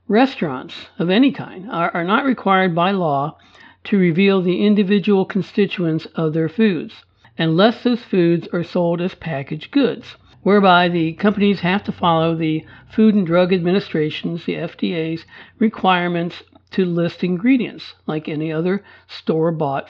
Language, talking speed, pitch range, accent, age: English, 140 wpm, 160-215 Hz, American, 60-79